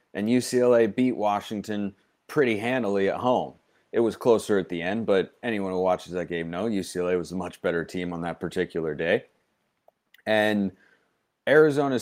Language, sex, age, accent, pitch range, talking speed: English, male, 30-49, American, 100-130 Hz, 165 wpm